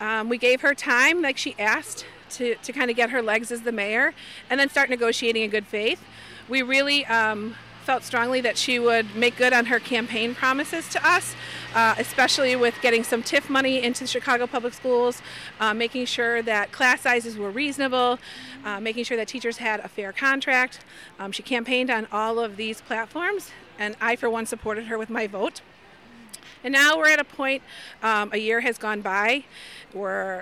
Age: 40-59